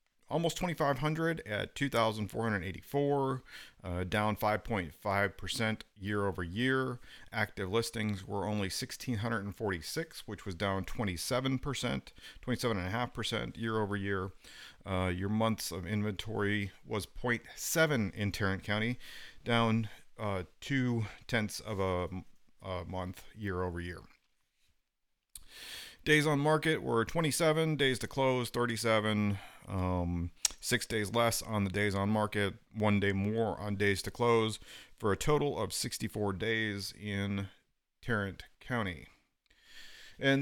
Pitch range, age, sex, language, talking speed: 100-125 Hz, 40-59, male, English, 120 wpm